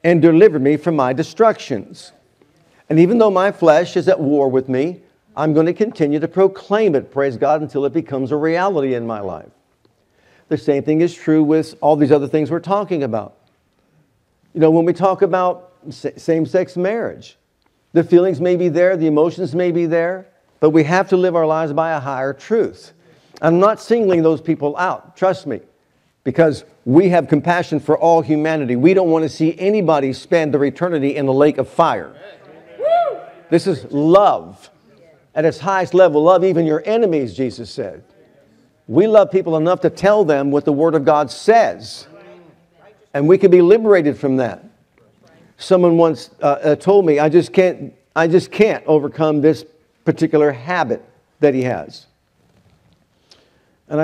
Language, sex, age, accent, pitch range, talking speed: English, male, 50-69, American, 150-180 Hz, 175 wpm